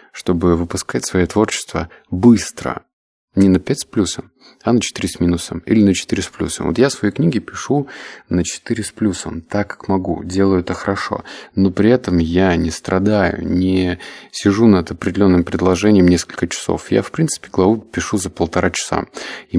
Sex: male